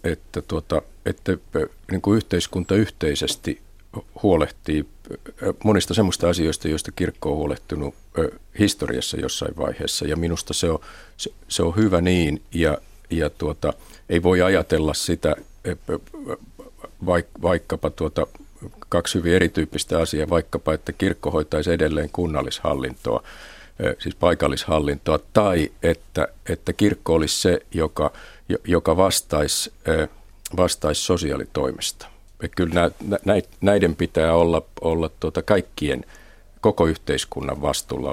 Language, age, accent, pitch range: Finnish, 50-69, native, 80-95 Hz